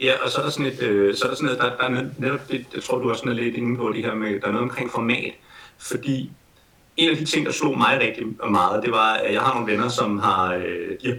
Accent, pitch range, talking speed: native, 115-150 Hz, 255 wpm